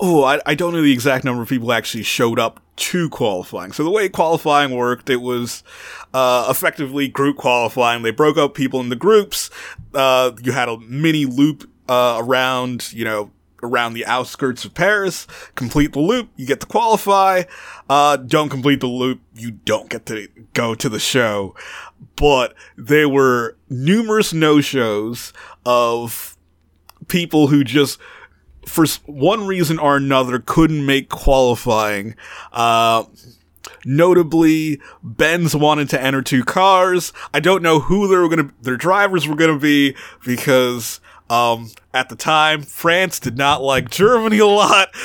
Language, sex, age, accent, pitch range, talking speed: English, male, 30-49, American, 125-170 Hz, 155 wpm